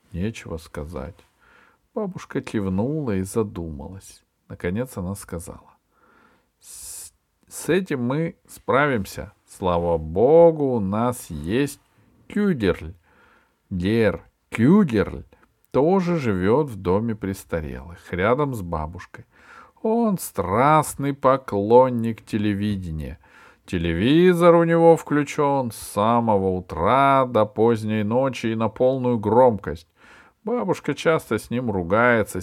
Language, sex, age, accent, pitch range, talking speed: Russian, male, 40-59, native, 95-150 Hz, 95 wpm